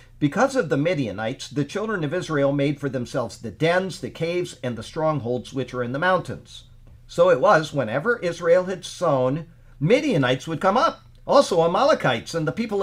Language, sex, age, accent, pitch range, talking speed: English, male, 50-69, American, 125-180 Hz, 180 wpm